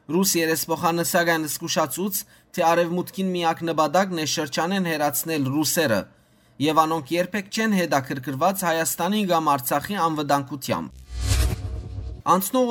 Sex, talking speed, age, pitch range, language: male, 105 wpm, 30-49, 160-195 Hz, English